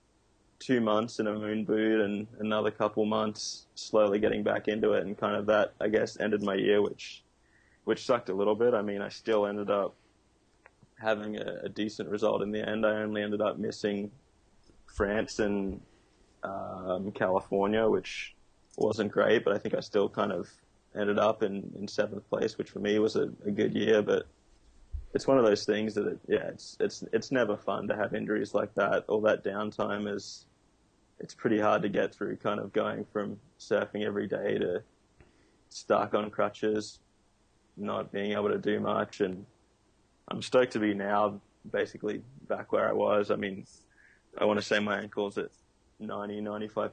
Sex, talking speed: male, 185 wpm